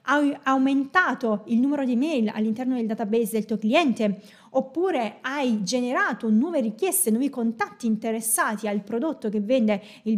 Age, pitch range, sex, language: 20-39, 220-285 Hz, female, Italian